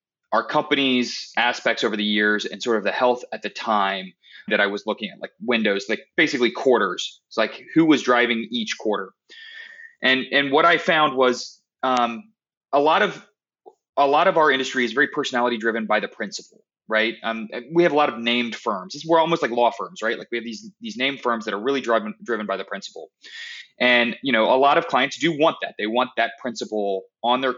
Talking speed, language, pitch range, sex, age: 215 wpm, English, 115-170 Hz, male, 30-49